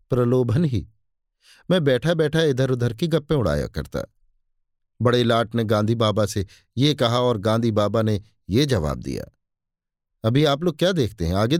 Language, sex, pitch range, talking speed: Hindi, male, 110-155 Hz, 170 wpm